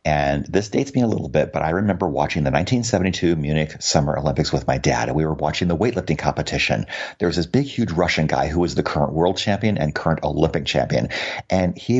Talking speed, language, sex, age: 225 wpm, English, male, 50-69